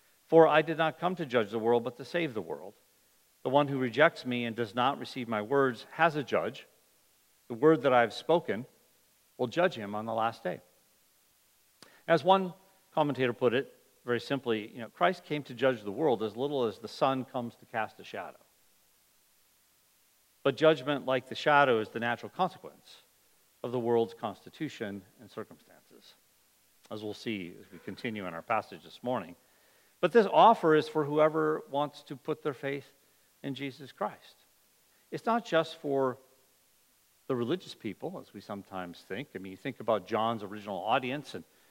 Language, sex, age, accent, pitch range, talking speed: English, male, 50-69, American, 115-155 Hz, 180 wpm